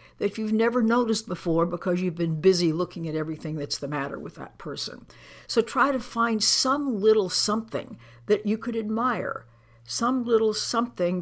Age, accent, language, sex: 60-79, American, English, female